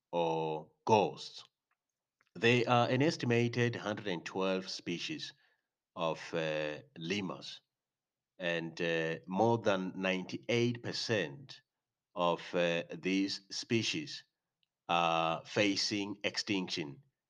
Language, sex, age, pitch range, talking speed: English, male, 40-59, 85-110 Hz, 80 wpm